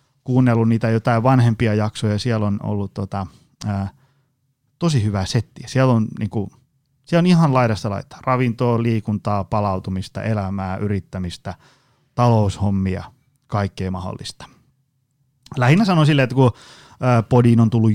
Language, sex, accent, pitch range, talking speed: Finnish, male, native, 105-135 Hz, 125 wpm